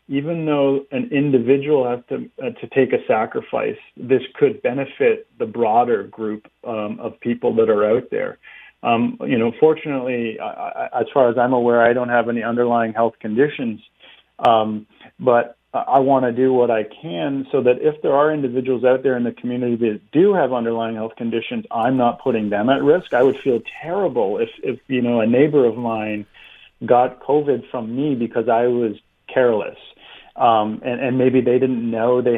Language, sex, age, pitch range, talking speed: English, male, 40-59, 120-145 Hz, 190 wpm